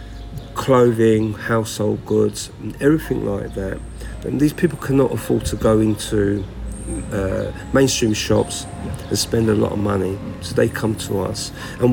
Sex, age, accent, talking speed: male, 50-69, British, 150 wpm